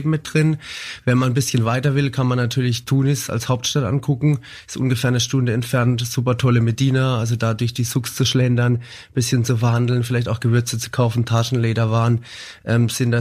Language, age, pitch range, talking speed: German, 20-39, 110-125 Hz, 195 wpm